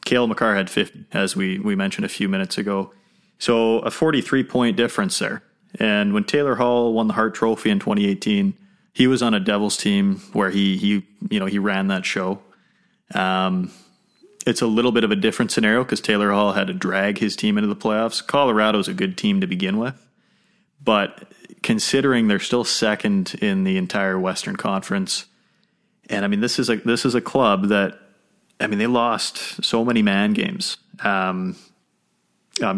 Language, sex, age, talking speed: English, male, 30-49, 185 wpm